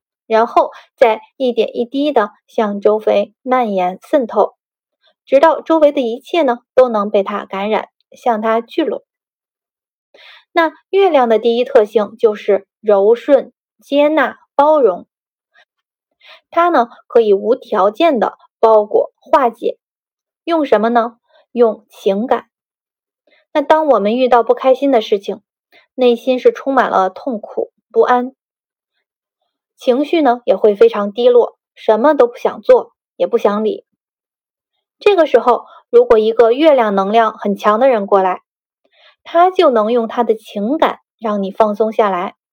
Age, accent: 20-39, native